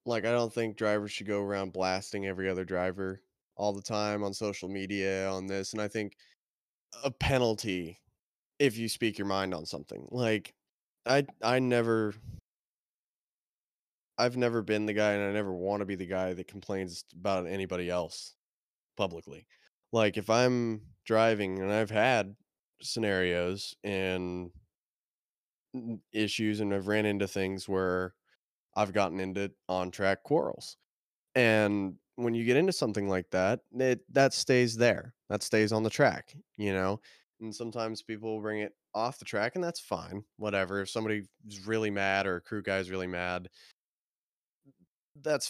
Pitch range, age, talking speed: 95-110 Hz, 20-39, 155 wpm